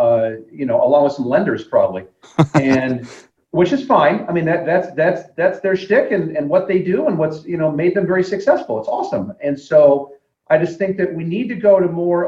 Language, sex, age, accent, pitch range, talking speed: English, male, 40-59, American, 145-200 Hz, 230 wpm